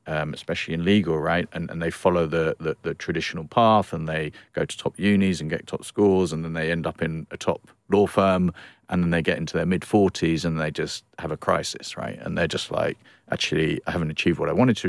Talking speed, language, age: 240 wpm, English, 40-59